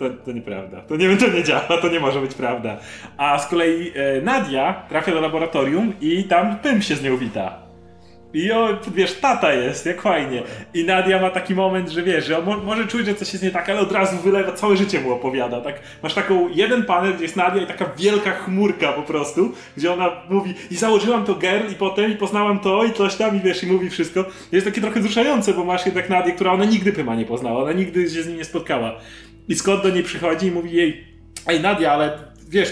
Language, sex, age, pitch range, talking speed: Polish, male, 30-49, 155-195 Hz, 235 wpm